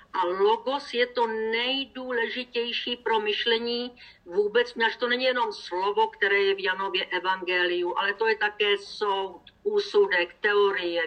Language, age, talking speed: Slovak, 50-69, 135 wpm